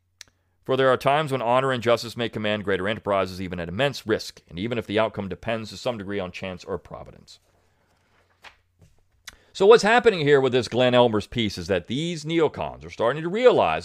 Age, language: 40-59, English